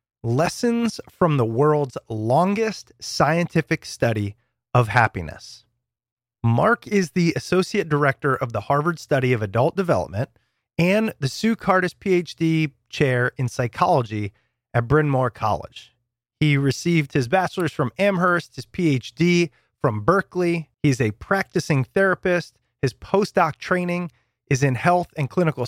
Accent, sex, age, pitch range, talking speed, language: American, male, 30-49, 120-180 Hz, 130 wpm, English